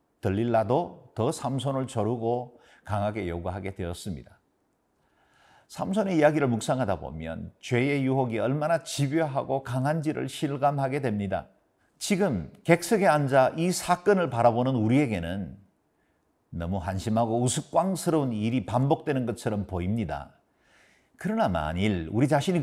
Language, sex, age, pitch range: Korean, male, 50-69, 105-155 Hz